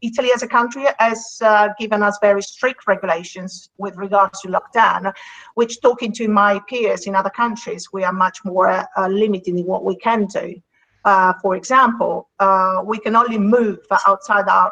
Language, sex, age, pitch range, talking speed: English, female, 50-69, 195-230 Hz, 180 wpm